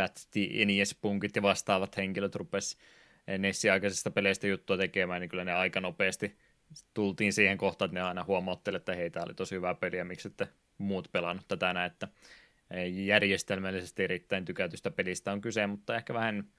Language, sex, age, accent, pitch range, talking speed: Finnish, male, 20-39, native, 90-100 Hz, 160 wpm